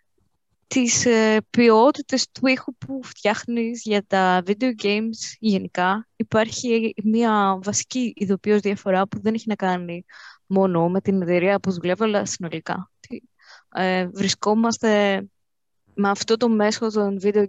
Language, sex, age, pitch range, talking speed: Greek, female, 20-39, 190-220 Hz, 125 wpm